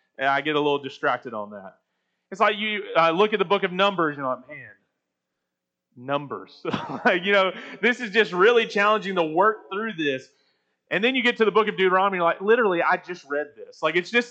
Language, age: English, 30-49